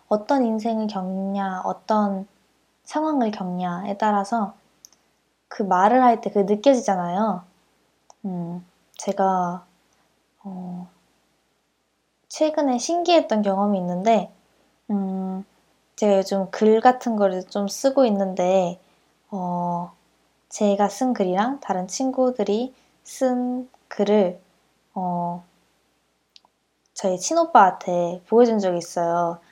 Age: 20-39